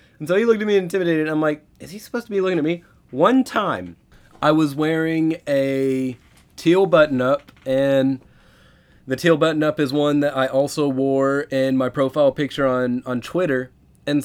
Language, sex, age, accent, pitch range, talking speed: English, male, 20-39, American, 130-195 Hz, 190 wpm